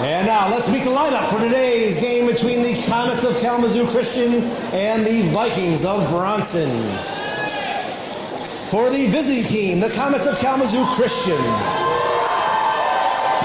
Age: 40-59